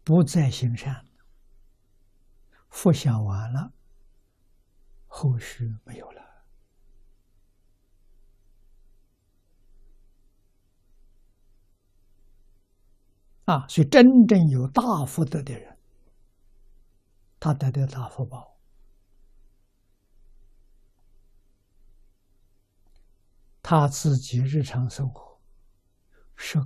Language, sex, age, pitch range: Chinese, male, 60-79, 95-125 Hz